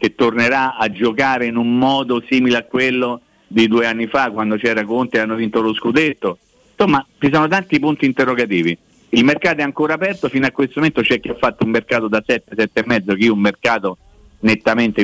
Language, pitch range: Italian, 110-150 Hz